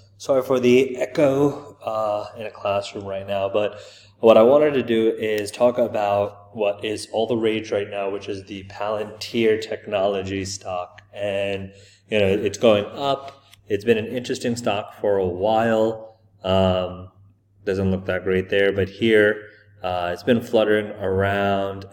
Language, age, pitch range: English, 20-39, 100-110 Hz